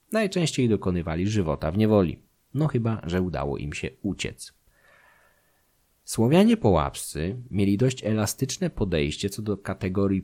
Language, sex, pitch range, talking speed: Polish, male, 90-115 Hz, 125 wpm